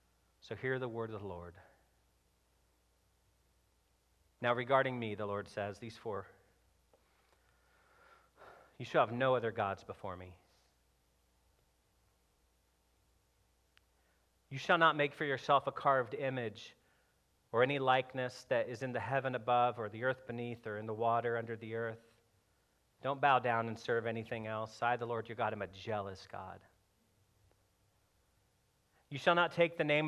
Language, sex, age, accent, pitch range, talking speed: English, male, 40-59, American, 100-140 Hz, 150 wpm